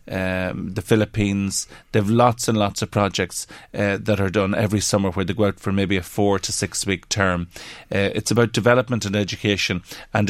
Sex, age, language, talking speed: male, 30-49, English, 205 wpm